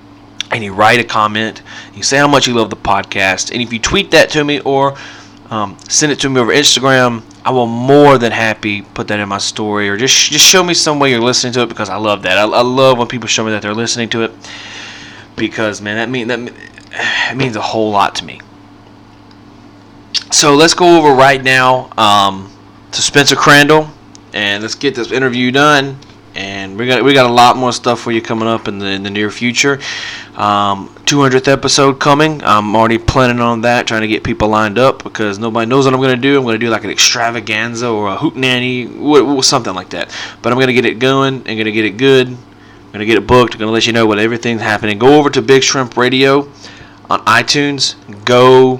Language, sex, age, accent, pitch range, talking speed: English, male, 20-39, American, 105-135 Hz, 225 wpm